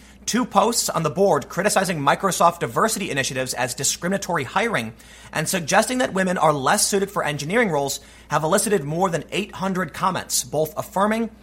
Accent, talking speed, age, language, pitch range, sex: American, 160 wpm, 30-49, English, 145-205 Hz, male